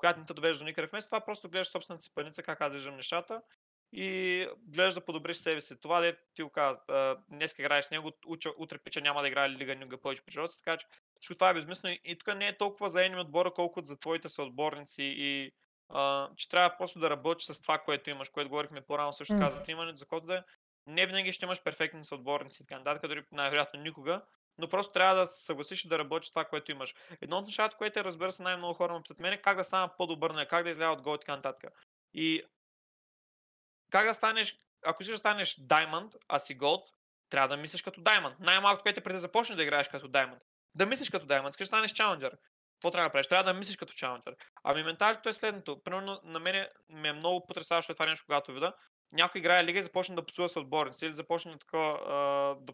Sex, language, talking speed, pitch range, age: male, Bulgarian, 215 wpm, 145-185 Hz, 20-39